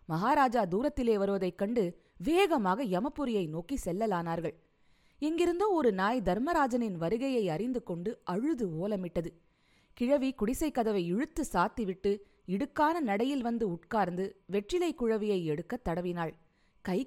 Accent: native